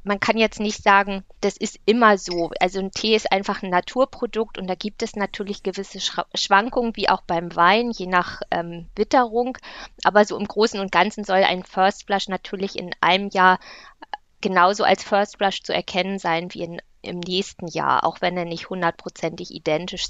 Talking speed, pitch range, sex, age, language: 190 wpm, 180-210 Hz, female, 20-39, German